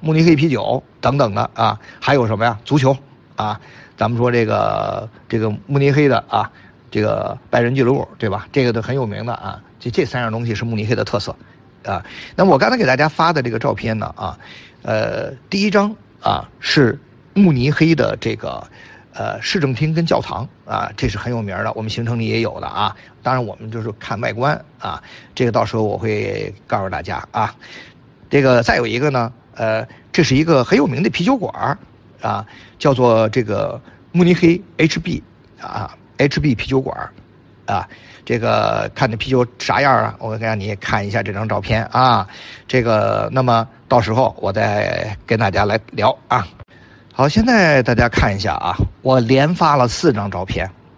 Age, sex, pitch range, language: 50-69, male, 110-140 Hz, Chinese